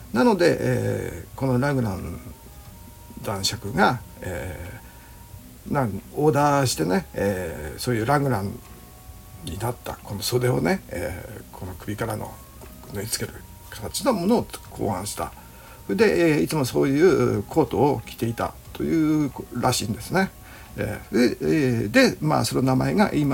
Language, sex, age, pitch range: Japanese, male, 60-79, 105-150 Hz